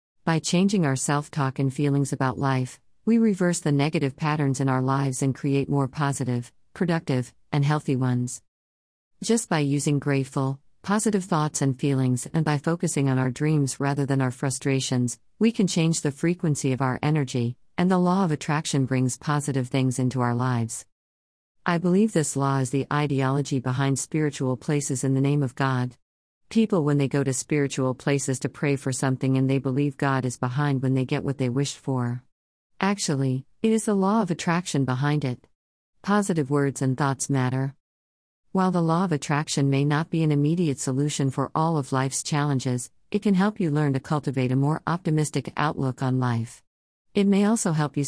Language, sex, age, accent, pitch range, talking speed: English, female, 50-69, American, 130-155 Hz, 185 wpm